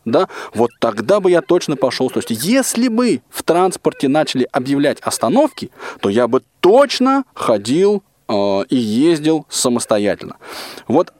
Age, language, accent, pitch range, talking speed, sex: 20-39, Russian, native, 125-210 Hz, 135 wpm, male